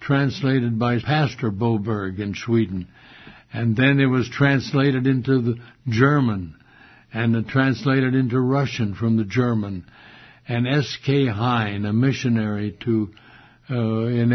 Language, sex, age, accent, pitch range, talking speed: English, male, 60-79, American, 110-130 Hz, 120 wpm